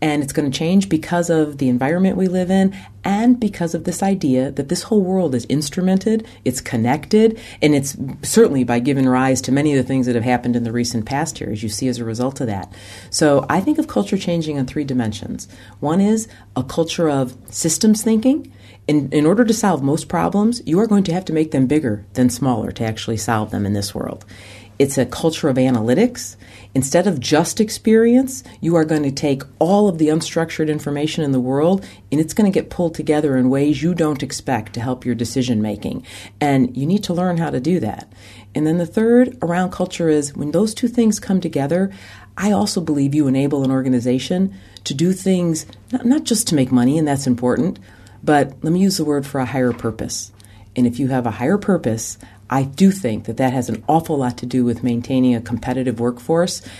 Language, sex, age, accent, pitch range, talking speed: English, female, 40-59, American, 120-170 Hz, 215 wpm